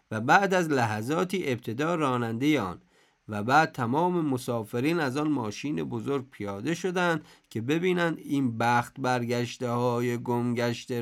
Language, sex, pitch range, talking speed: Persian, male, 115-150 Hz, 125 wpm